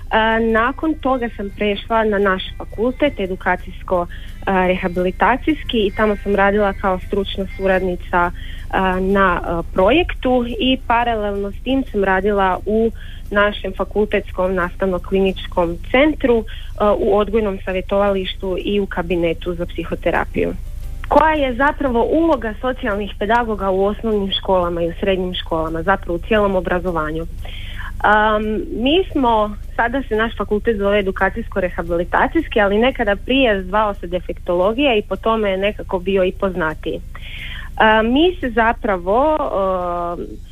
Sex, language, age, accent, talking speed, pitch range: female, Croatian, 30-49, native, 120 wpm, 185-225 Hz